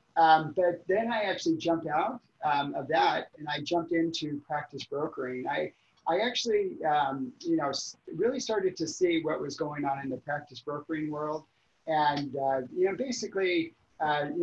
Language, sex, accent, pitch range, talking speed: English, male, American, 145-175 Hz, 175 wpm